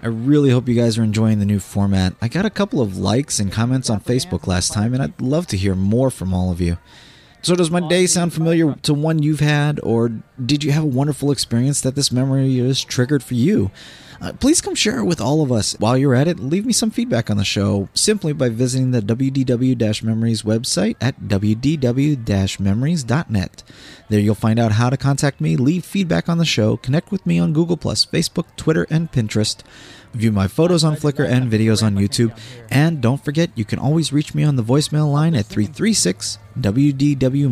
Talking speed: 215 wpm